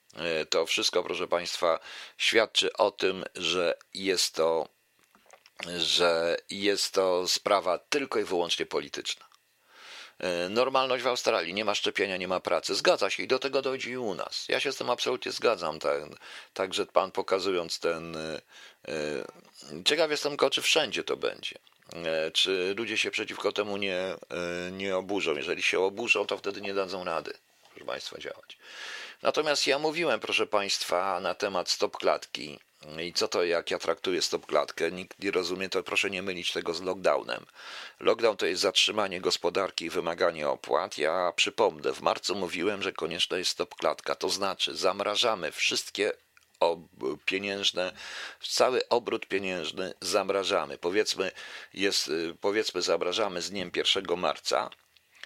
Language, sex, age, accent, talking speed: Polish, male, 50-69, native, 145 wpm